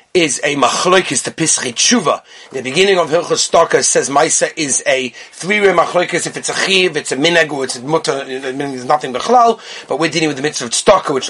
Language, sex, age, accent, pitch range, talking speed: English, male, 30-49, British, 160-240 Hz, 210 wpm